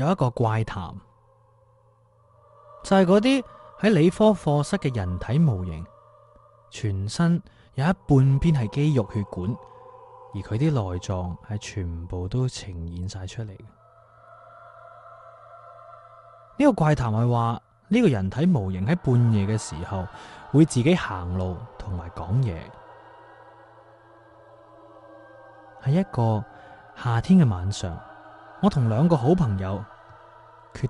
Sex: male